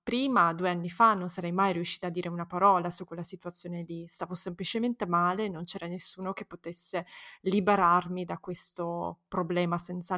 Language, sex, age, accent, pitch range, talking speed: Italian, female, 20-39, native, 180-220 Hz, 170 wpm